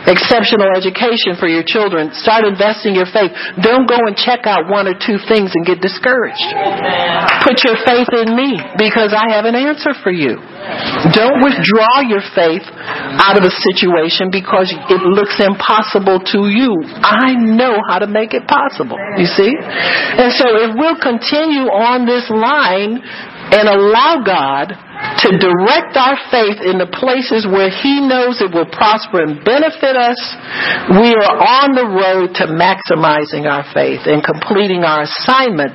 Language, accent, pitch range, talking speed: English, American, 180-230 Hz, 160 wpm